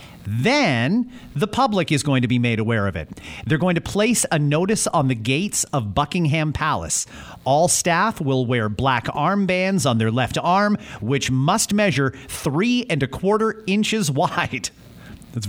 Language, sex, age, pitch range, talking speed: English, male, 40-59, 120-170 Hz, 165 wpm